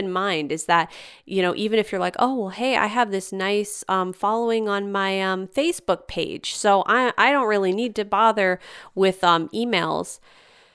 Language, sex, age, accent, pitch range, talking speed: English, female, 30-49, American, 185-235 Hz, 195 wpm